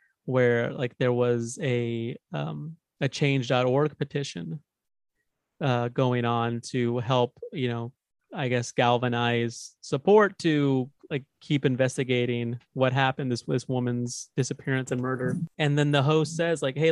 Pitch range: 125-145 Hz